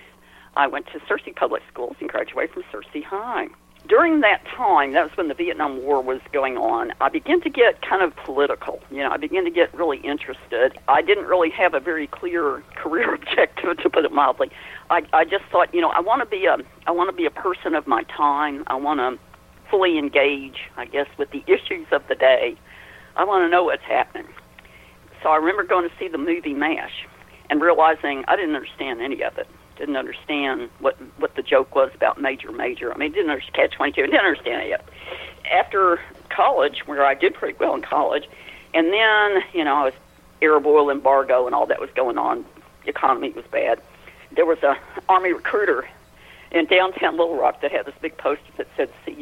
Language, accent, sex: English, American, female